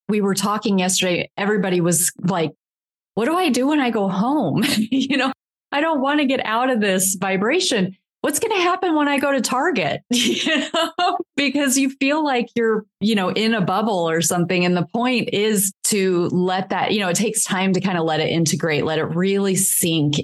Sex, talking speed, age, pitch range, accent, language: female, 215 wpm, 30-49, 165-205 Hz, American, English